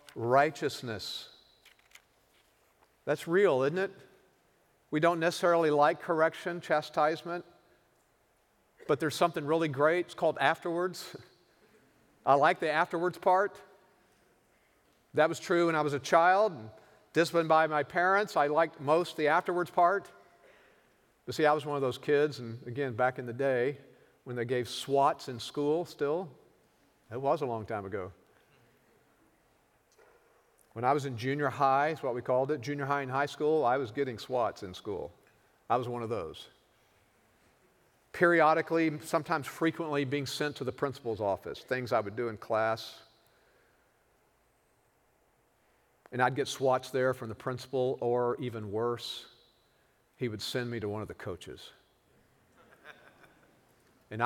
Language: English